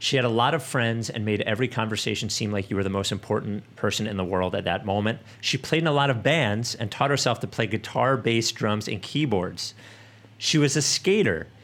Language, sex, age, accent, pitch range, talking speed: English, male, 40-59, American, 100-125 Hz, 230 wpm